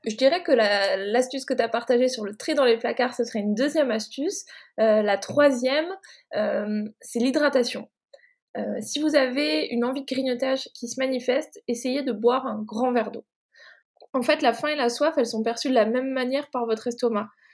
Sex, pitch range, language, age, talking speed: female, 220-270 Hz, French, 20-39, 210 wpm